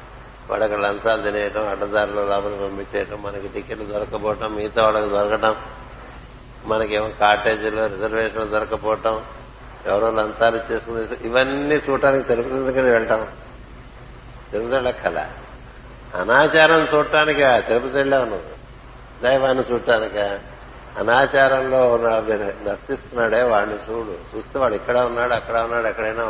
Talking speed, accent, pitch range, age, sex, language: 100 wpm, native, 110-130 Hz, 60-79, male, Telugu